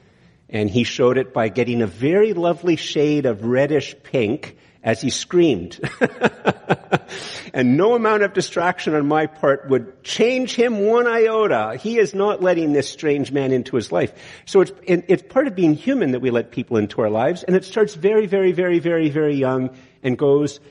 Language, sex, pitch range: English, male, 130-180 Hz